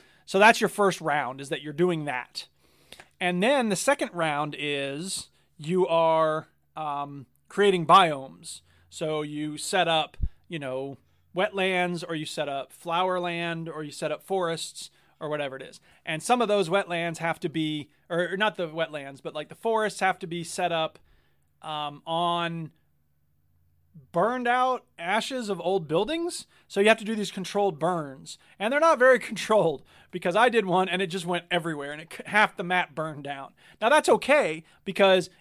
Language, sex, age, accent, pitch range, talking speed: English, male, 30-49, American, 150-195 Hz, 180 wpm